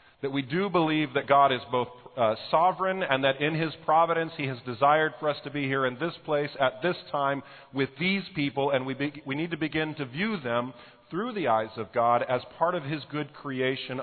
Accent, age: American, 40-59